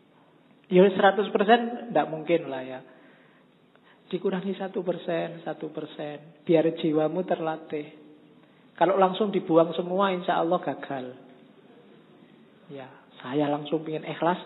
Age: 50-69